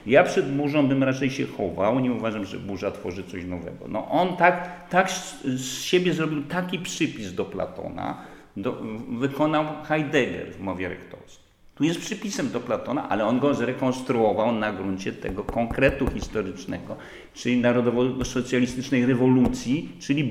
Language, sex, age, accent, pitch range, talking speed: Polish, male, 50-69, native, 95-140 Hz, 140 wpm